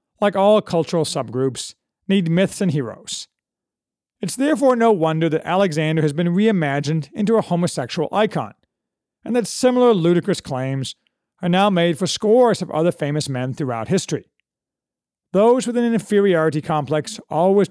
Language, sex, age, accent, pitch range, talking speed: English, male, 40-59, American, 150-205 Hz, 145 wpm